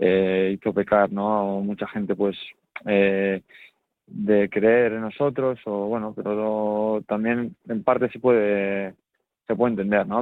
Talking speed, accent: 160 wpm, Spanish